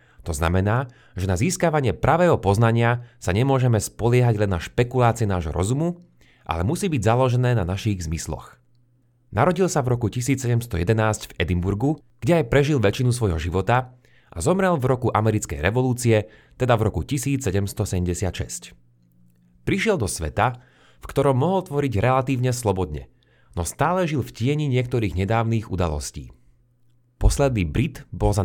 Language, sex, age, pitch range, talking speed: Slovak, male, 30-49, 100-130 Hz, 140 wpm